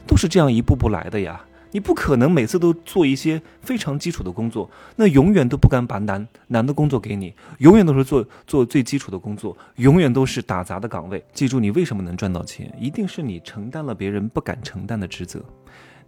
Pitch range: 95-130 Hz